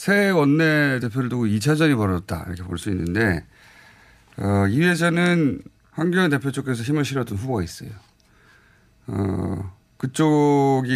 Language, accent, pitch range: Korean, native, 100-130 Hz